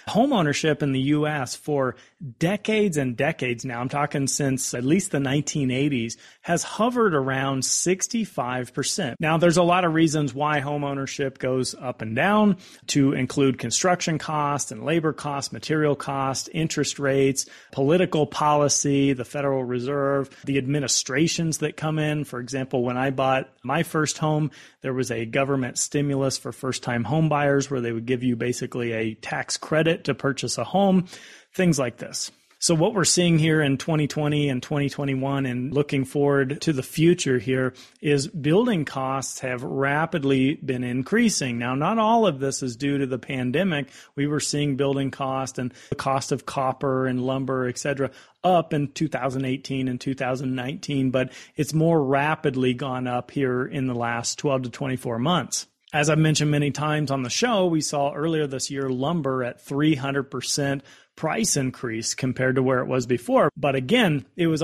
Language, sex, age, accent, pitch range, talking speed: English, male, 30-49, American, 130-155 Hz, 165 wpm